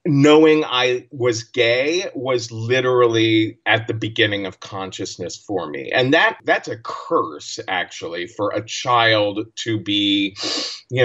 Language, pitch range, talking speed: English, 100-130 Hz, 135 wpm